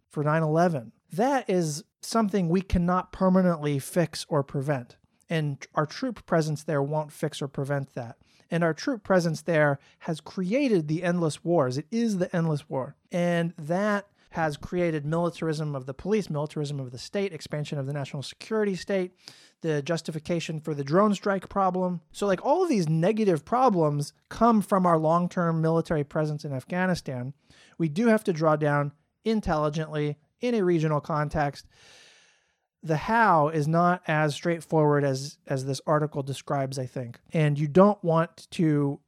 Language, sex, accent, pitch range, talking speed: English, male, American, 145-175 Hz, 160 wpm